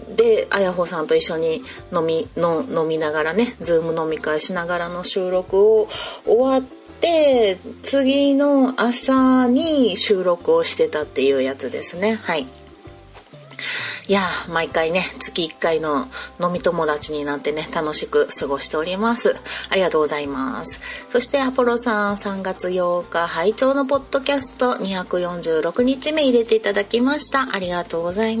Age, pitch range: 30-49, 175-275 Hz